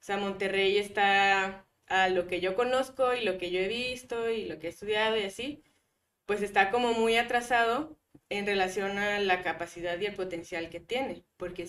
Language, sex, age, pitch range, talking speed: Spanish, female, 20-39, 180-205 Hz, 195 wpm